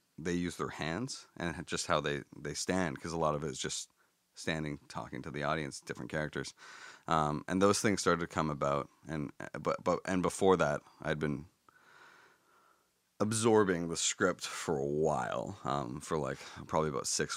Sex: male